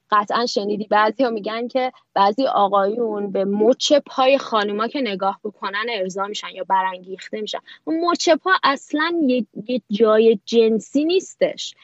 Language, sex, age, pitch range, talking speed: Persian, female, 20-39, 200-270 Hz, 150 wpm